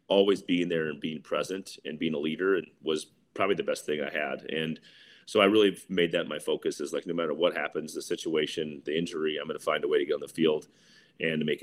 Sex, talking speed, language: male, 255 wpm, English